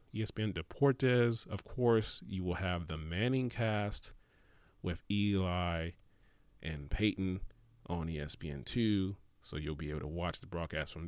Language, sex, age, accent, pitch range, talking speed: English, male, 30-49, American, 80-105 Hz, 135 wpm